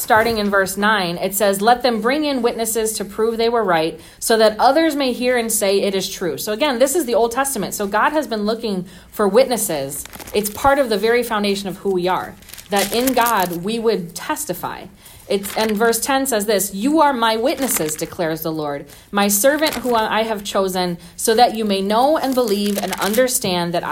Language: English